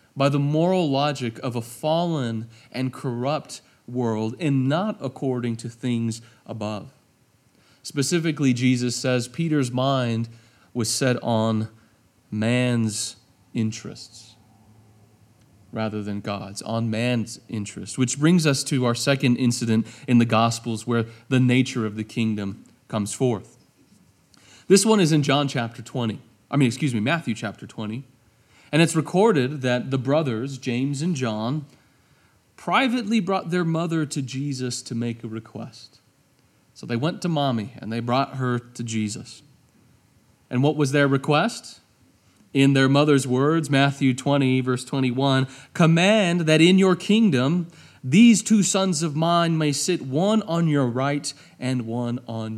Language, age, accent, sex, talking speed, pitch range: English, 30-49, American, male, 145 wpm, 115-145 Hz